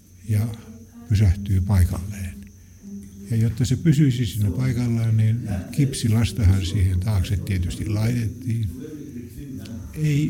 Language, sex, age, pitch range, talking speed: Finnish, male, 60-79, 95-115 Hz, 100 wpm